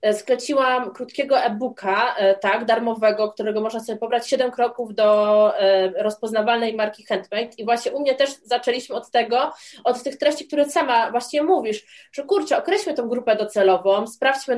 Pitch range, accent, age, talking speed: 215-285 Hz, native, 20-39, 150 wpm